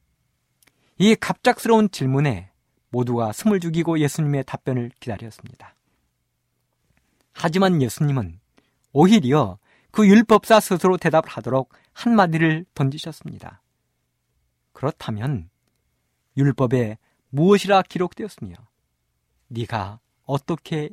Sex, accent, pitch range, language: male, native, 115-175 Hz, Korean